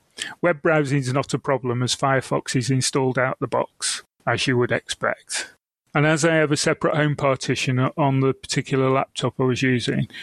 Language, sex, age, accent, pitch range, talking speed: English, male, 30-49, British, 130-145 Hz, 195 wpm